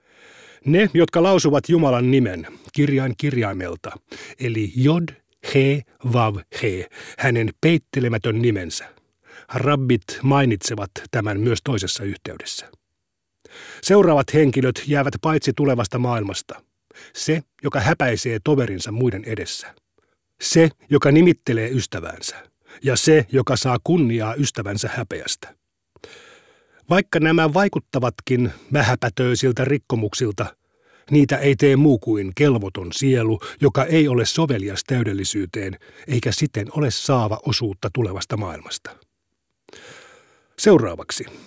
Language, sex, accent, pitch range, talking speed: Finnish, male, native, 110-150 Hz, 100 wpm